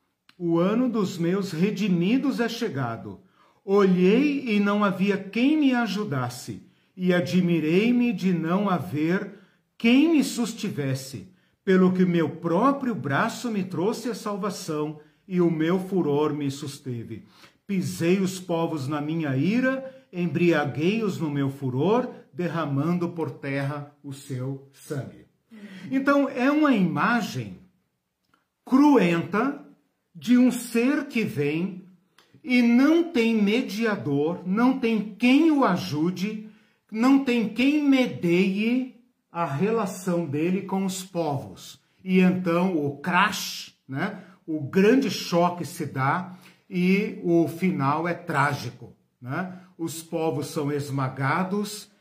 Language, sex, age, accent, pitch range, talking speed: Portuguese, male, 50-69, Brazilian, 155-215 Hz, 120 wpm